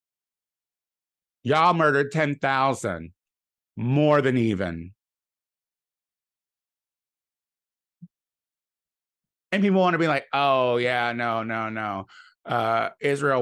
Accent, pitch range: American, 115-170 Hz